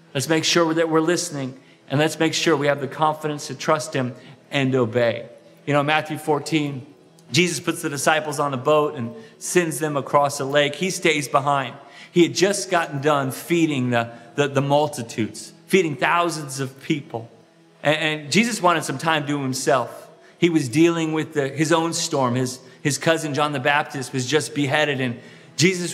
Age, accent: 40-59, American